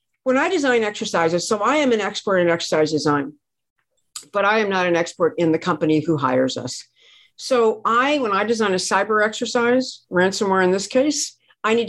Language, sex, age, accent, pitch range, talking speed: English, female, 50-69, American, 170-240 Hz, 190 wpm